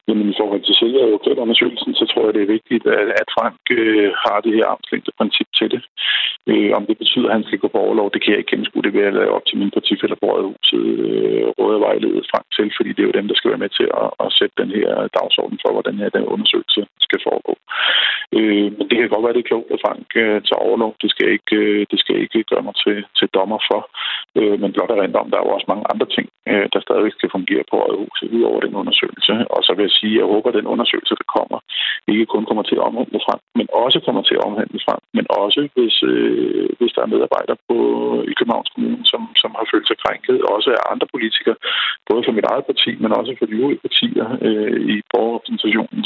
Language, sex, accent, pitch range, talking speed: Danish, male, native, 320-415 Hz, 245 wpm